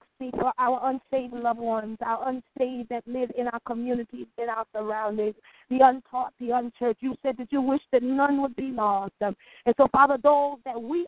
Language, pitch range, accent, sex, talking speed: English, 240-315 Hz, American, female, 190 wpm